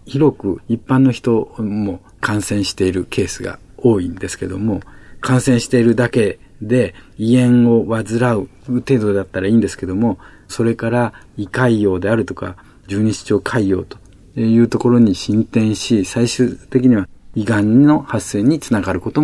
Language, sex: Japanese, male